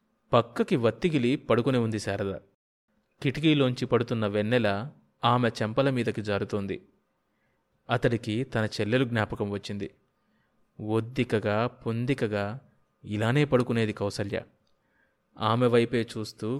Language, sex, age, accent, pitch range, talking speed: Telugu, male, 20-39, native, 105-130 Hz, 85 wpm